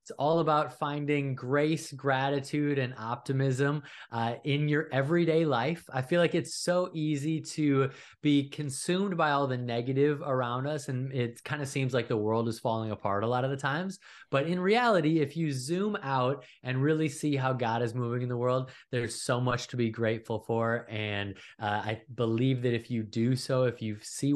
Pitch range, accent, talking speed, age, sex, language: 115-155 Hz, American, 195 wpm, 20-39, male, English